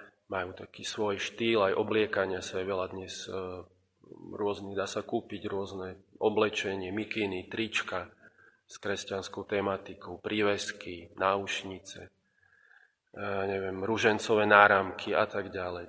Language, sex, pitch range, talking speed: Slovak, male, 95-110 Hz, 110 wpm